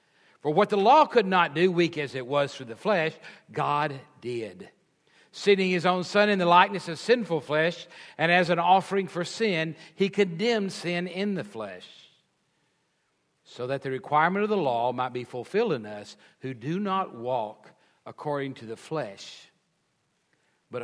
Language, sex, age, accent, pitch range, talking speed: English, male, 60-79, American, 130-175 Hz, 170 wpm